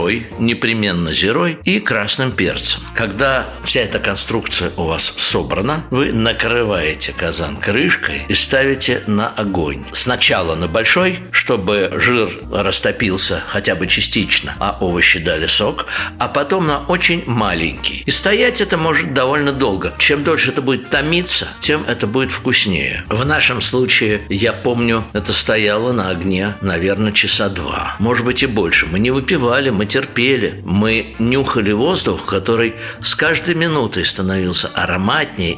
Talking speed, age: 140 wpm, 60-79